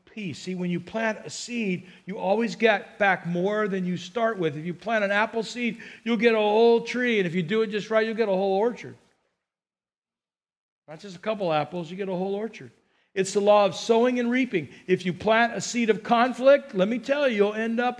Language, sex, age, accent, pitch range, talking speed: English, male, 50-69, American, 175-215 Hz, 230 wpm